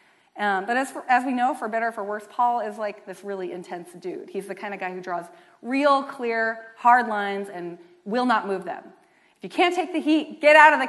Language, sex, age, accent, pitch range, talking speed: English, female, 30-49, American, 205-315 Hz, 240 wpm